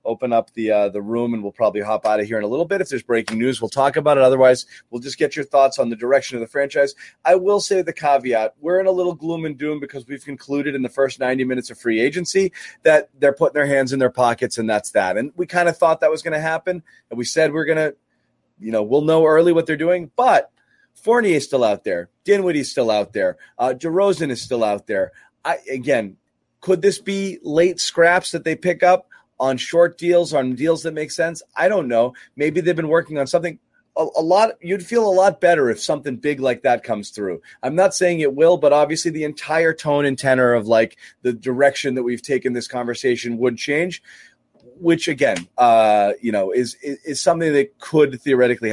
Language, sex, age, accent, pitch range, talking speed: English, male, 30-49, American, 125-170 Hz, 235 wpm